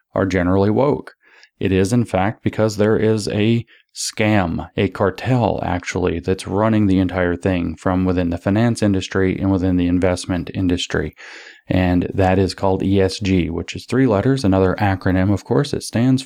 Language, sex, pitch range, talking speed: English, male, 90-110 Hz, 165 wpm